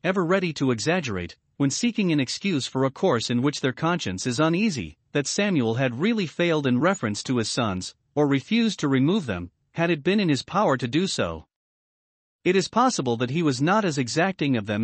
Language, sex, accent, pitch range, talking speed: English, male, American, 125-175 Hz, 210 wpm